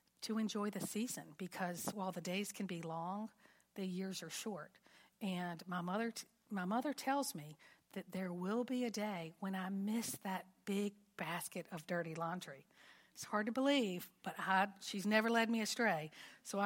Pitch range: 175-215 Hz